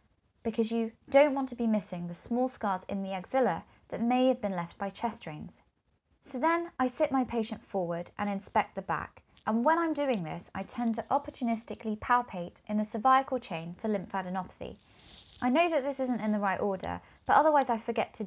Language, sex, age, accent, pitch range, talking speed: English, female, 20-39, British, 190-245 Hz, 205 wpm